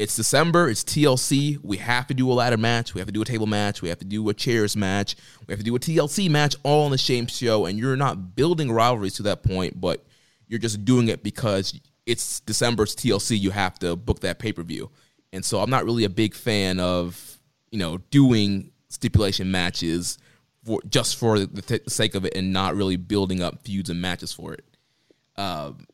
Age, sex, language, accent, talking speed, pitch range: 20-39, male, English, American, 215 wpm, 100-125 Hz